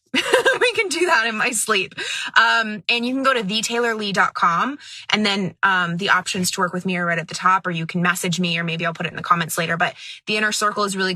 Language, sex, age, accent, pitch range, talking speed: English, female, 20-39, American, 190-240 Hz, 265 wpm